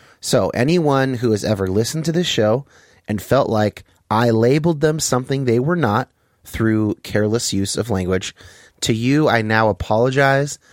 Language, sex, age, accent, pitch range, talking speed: English, male, 30-49, American, 100-140 Hz, 160 wpm